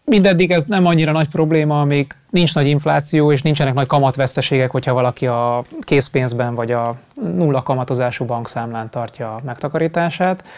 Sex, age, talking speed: male, 20-39, 145 wpm